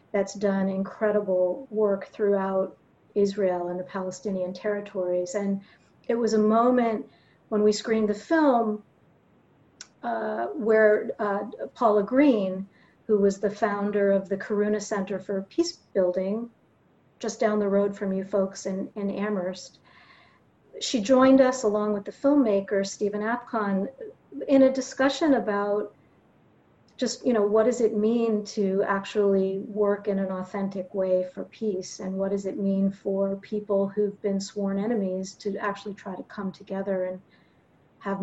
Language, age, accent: English, 40-59, American